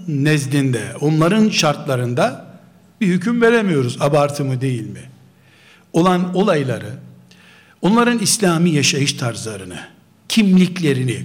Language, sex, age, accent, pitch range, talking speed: Turkish, male, 60-79, native, 130-215 Hz, 85 wpm